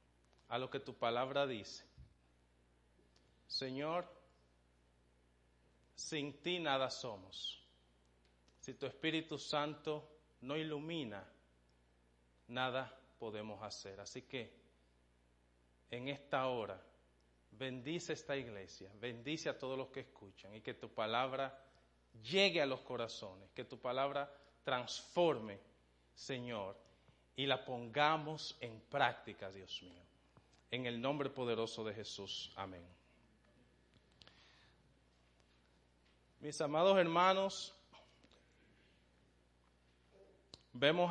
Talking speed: 95 wpm